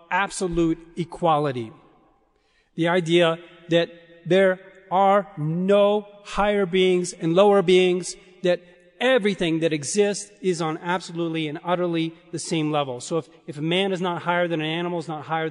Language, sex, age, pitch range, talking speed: English, male, 40-59, 150-185 Hz, 150 wpm